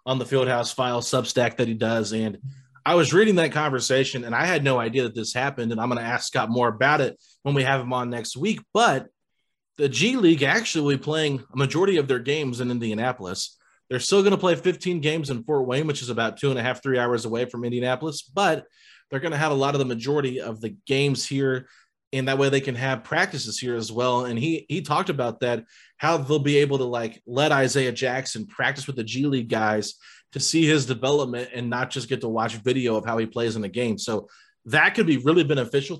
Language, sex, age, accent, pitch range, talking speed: English, male, 30-49, American, 120-145 Hz, 235 wpm